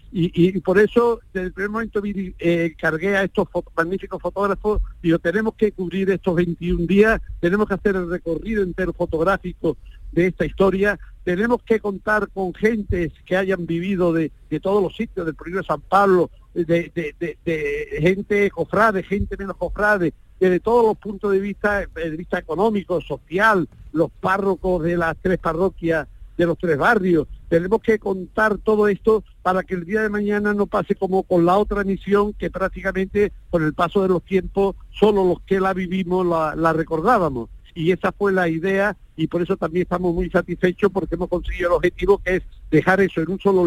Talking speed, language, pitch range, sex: 195 wpm, Spanish, 170-200 Hz, male